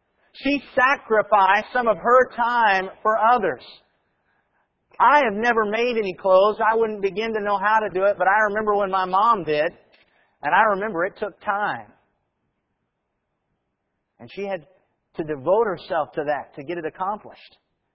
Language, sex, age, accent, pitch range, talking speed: English, male, 50-69, American, 150-220 Hz, 160 wpm